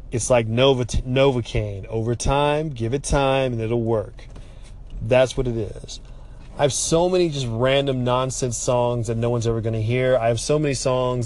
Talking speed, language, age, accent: 185 wpm, English, 20-39, American